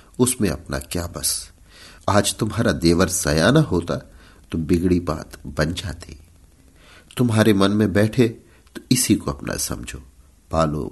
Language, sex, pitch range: Hindi, male, 80-100 Hz